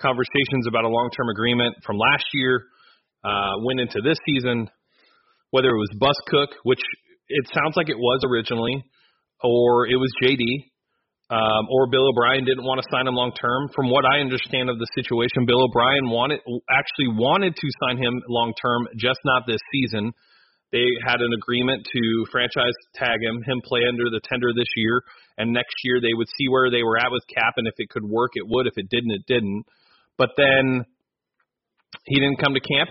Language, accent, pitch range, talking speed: English, American, 120-135 Hz, 190 wpm